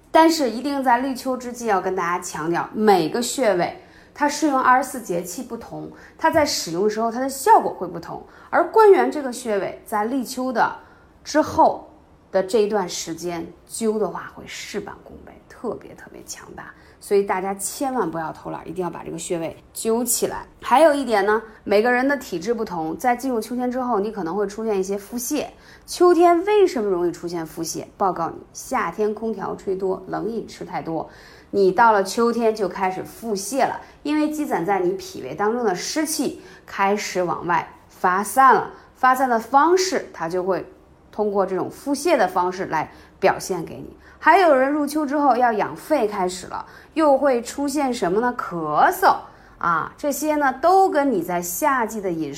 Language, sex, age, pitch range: Chinese, female, 20-39, 190-285 Hz